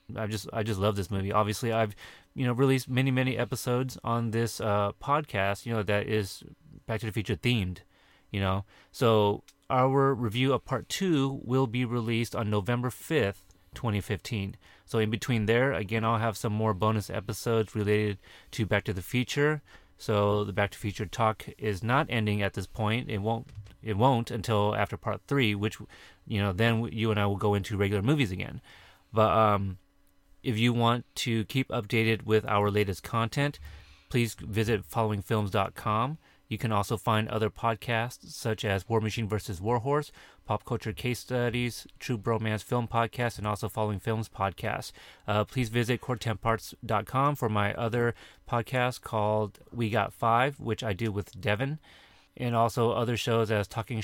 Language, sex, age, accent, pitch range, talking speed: English, male, 30-49, American, 105-120 Hz, 175 wpm